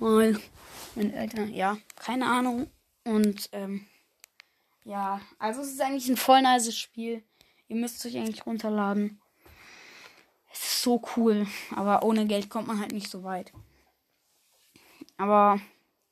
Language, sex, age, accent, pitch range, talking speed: German, female, 10-29, German, 215-265 Hz, 125 wpm